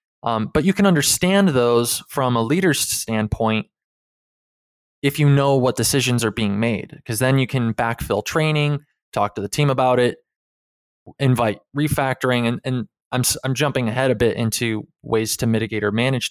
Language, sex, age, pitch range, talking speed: English, male, 20-39, 115-145 Hz, 170 wpm